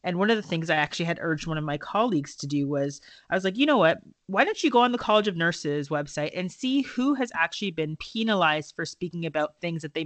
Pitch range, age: 155-190 Hz, 30-49